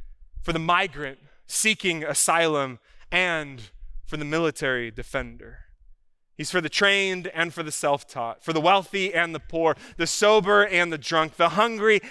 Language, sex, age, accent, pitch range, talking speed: English, male, 20-39, American, 115-160 Hz, 155 wpm